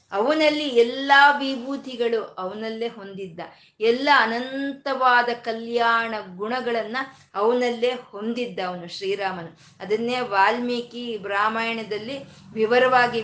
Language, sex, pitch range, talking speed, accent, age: Kannada, female, 200-260 Hz, 75 wpm, native, 20-39